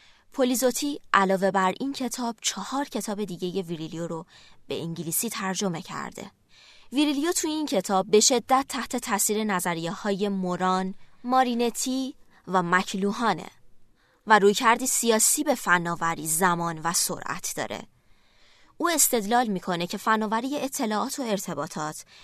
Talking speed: 125 wpm